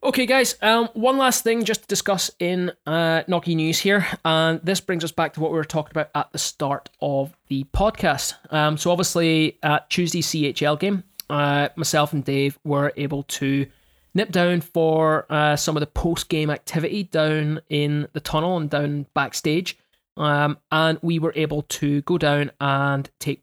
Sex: male